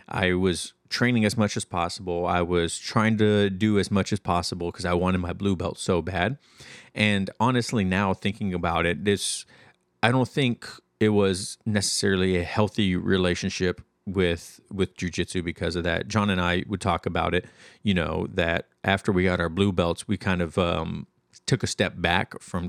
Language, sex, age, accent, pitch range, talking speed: English, male, 30-49, American, 90-105 Hz, 190 wpm